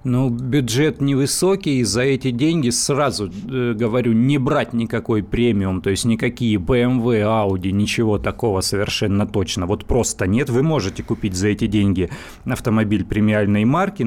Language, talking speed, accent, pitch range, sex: Russian, 140 wpm, native, 105-130 Hz, male